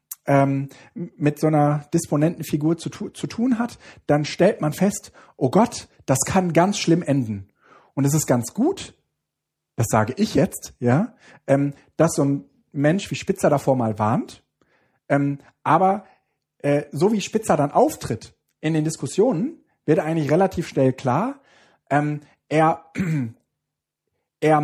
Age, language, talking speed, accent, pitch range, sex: 40-59, German, 130 wpm, German, 140-185 Hz, male